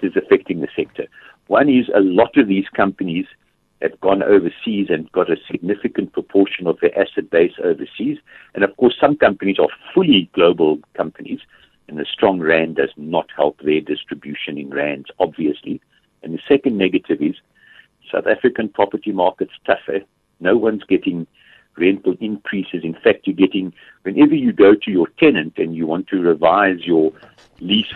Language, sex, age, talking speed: English, male, 60-79, 165 wpm